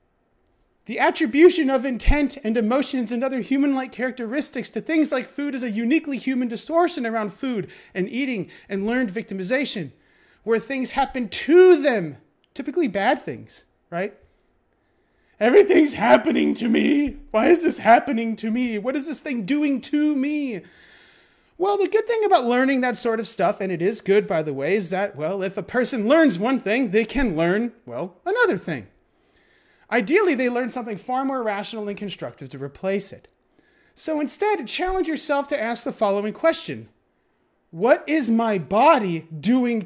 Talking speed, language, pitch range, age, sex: 165 wpm, English, 215-300 Hz, 30-49, male